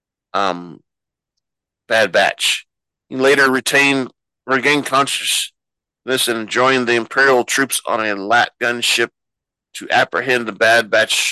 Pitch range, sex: 105-130 Hz, male